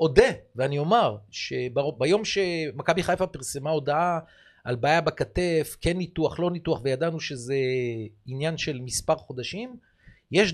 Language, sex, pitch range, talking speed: Hebrew, male, 130-195 Hz, 130 wpm